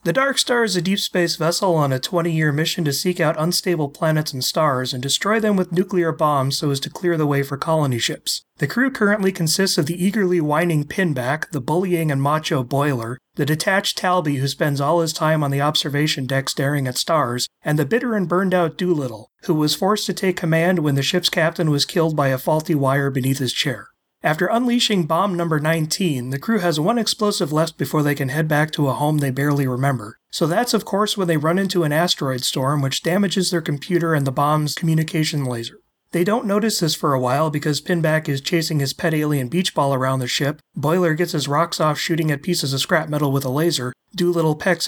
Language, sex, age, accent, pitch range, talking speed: English, male, 30-49, American, 145-175 Hz, 220 wpm